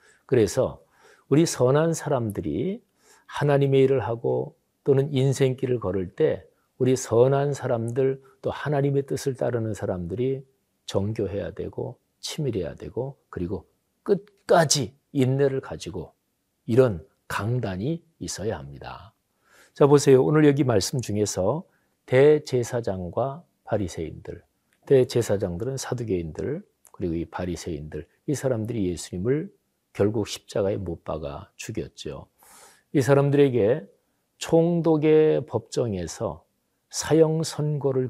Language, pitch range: Korean, 115-145 Hz